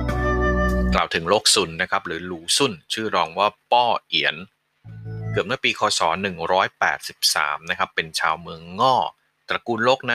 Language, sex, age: Thai, male, 30-49